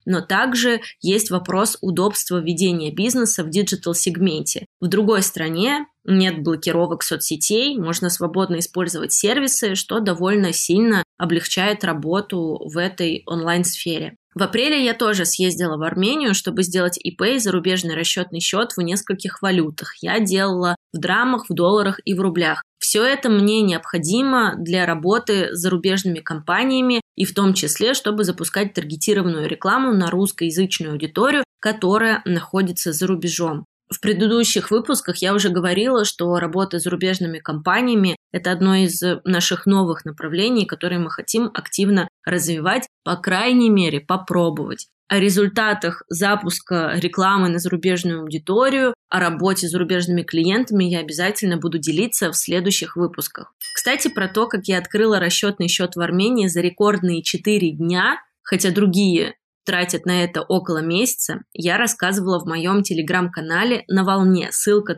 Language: Russian